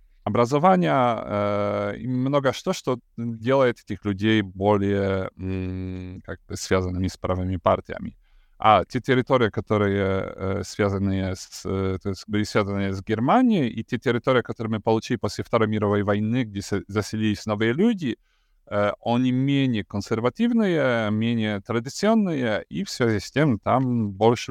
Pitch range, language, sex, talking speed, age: 95-115 Hz, Russian, male, 120 wpm, 30-49